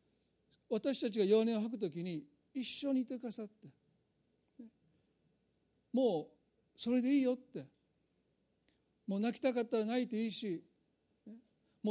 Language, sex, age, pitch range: Japanese, male, 50-69, 185-240 Hz